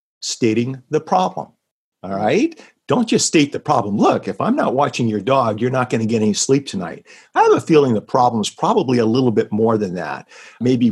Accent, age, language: American, 50-69, English